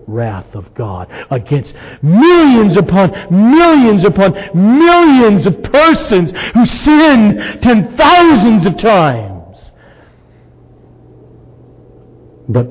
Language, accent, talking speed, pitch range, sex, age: English, American, 85 wpm, 110-180 Hz, male, 60-79